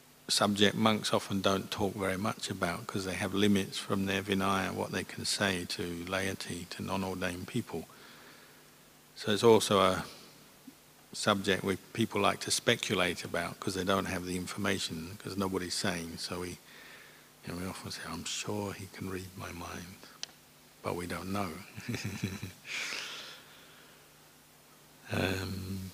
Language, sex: English, male